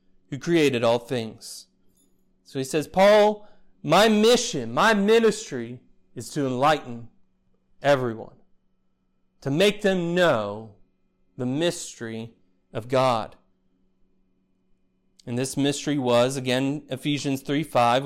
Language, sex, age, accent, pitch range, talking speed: English, male, 30-49, American, 95-150 Hz, 105 wpm